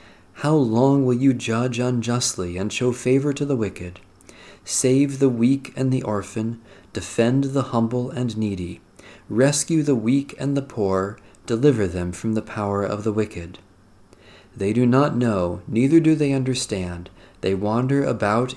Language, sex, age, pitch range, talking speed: English, male, 40-59, 95-125 Hz, 155 wpm